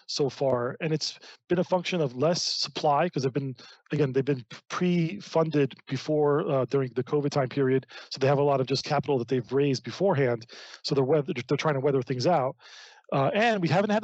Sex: male